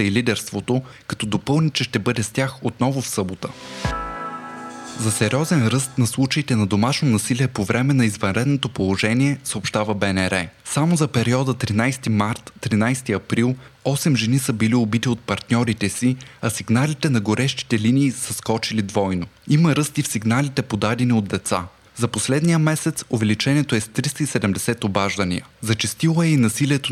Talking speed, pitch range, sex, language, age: 155 wpm, 110-135 Hz, male, Bulgarian, 20-39